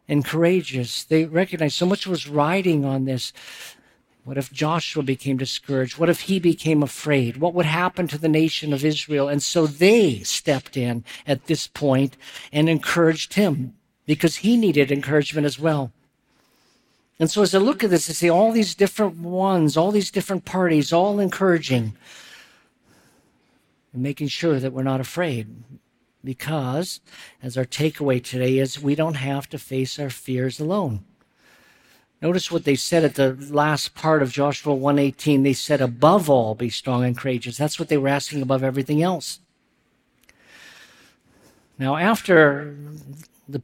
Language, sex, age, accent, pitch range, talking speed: English, male, 50-69, American, 135-160 Hz, 160 wpm